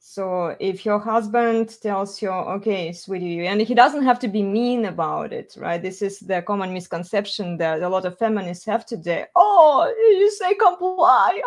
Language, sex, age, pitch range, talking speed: English, female, 20-39, 190-245 Hz, 180 wpm